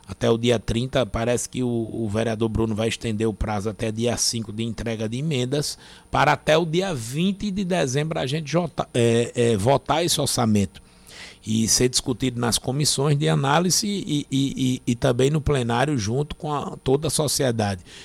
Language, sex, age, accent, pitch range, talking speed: Portuguese, male, 60-79, Brazilian, 115-145 Hz, 185 wpm